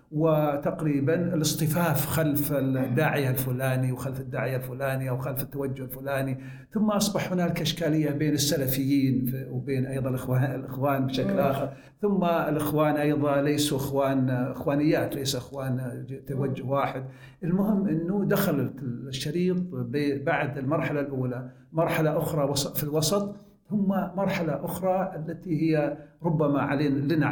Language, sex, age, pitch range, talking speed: Arabic, male, 60-79, 135-165 Hz, 120 wpm